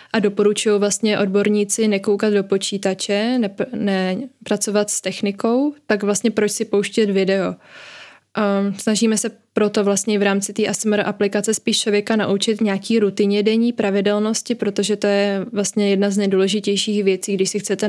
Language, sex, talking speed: Czech, female, 140 wpm